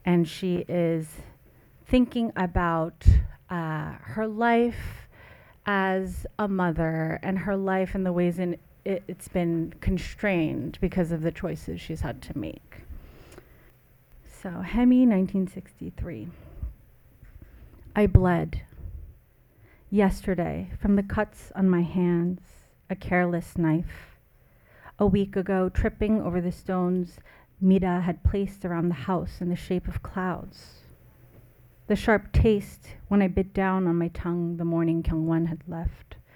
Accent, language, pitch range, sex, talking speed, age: American, English, 160-190 Hz, female, 125 wpm, 30-49